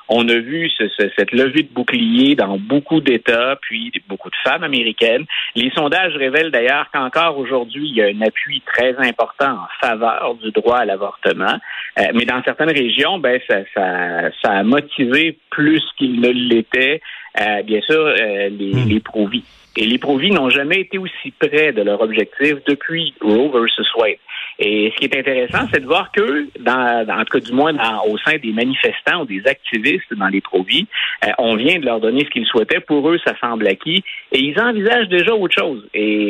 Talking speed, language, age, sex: 200 wpm, French, 50-69, male